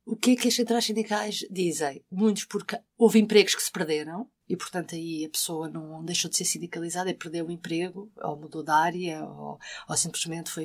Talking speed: 210 wpm